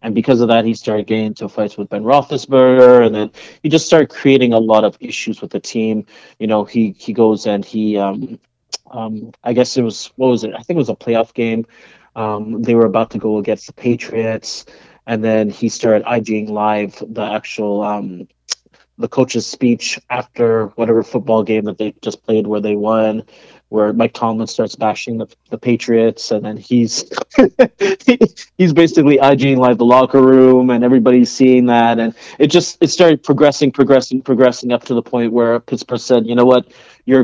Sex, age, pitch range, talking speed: male, 30-49, 110-130 Hz, 195 wpm